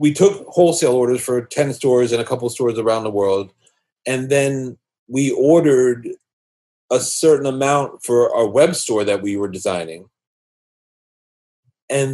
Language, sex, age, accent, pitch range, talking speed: English, male, 40-59, American, 110-145 Hz, 150 wpm